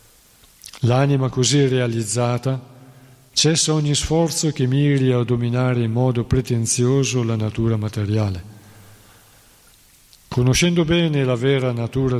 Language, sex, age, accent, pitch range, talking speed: Italian, male, 40-59, native, 115-140 Hz, 105 wpm